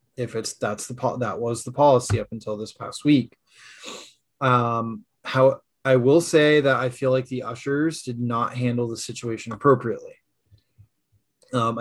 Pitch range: 115-135 Hz